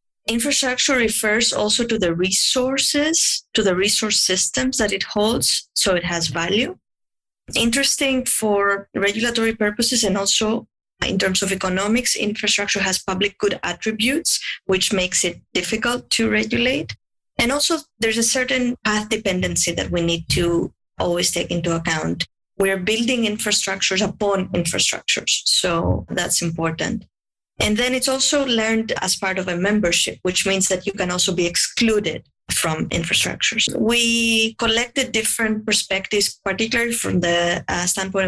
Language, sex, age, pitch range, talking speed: English, female, 20-39, 185-230 Hz, 140 wpm